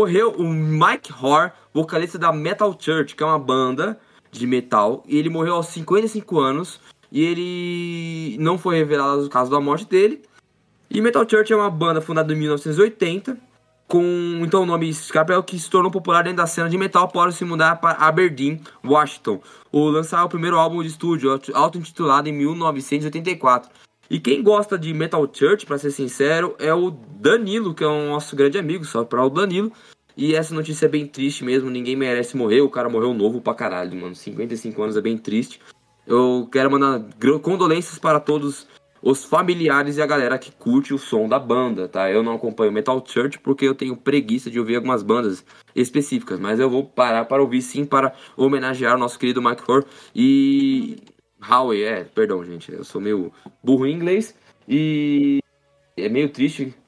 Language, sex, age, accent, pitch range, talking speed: Portuguese, male, 10-29, Brazilian, 135-175 Hz, 185 wpm